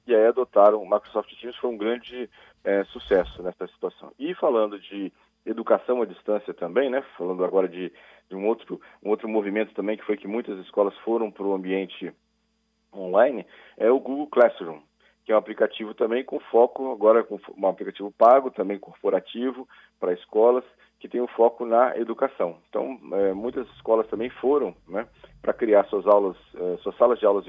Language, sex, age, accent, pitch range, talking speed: Portuguese, male, 40-59, Brazilian, 100-125 Hz, 180 wpm